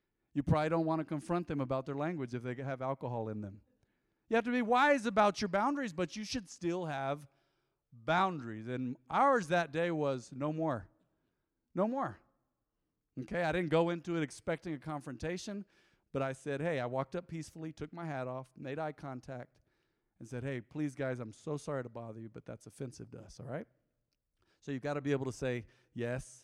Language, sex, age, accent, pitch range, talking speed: English, male, 50-69, American, 125-175 Hz, 205 wpm